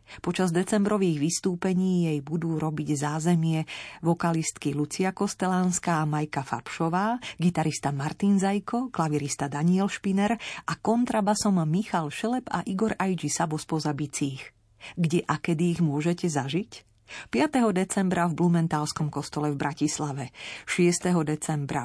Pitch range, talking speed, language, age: 150-190 Hz, 120 wpm, Slovak, 40-59